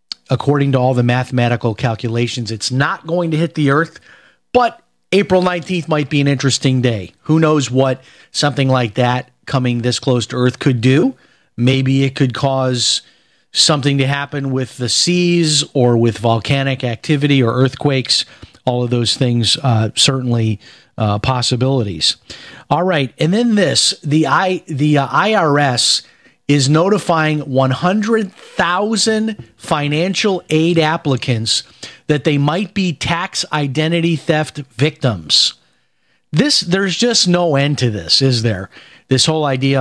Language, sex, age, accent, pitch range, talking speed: English, male, 40-59, American, 125-165 Hz, 140 wpm